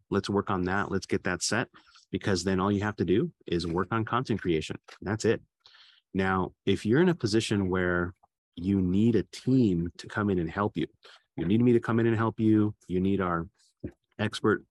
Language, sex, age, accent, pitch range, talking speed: English, male, 30-49, American, 90-110 Hz, 210 wpm